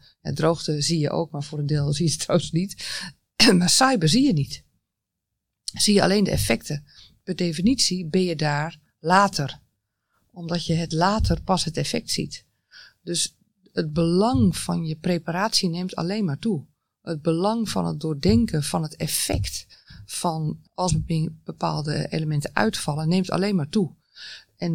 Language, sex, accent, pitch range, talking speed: Dutch, female, Dutch, 150-185 Hz, 160 wpm